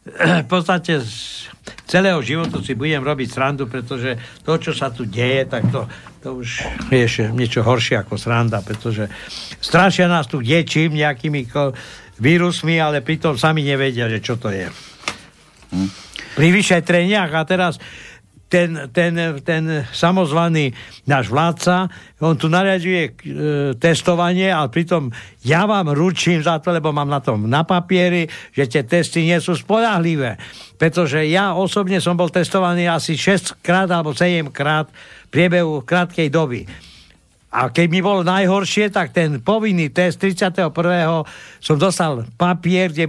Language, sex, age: Slovak, male, 60-79